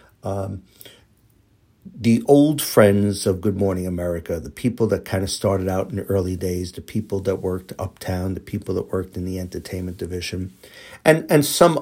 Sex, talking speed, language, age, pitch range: male, 180 wpm, English, 60-79, 95-110 Hz